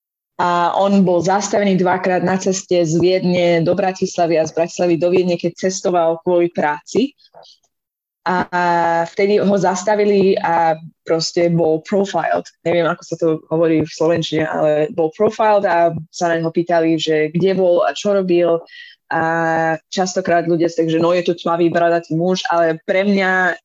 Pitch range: 165-195 Hz